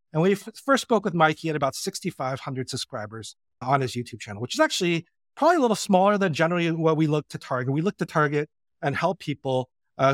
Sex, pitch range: male, 130-175 Hz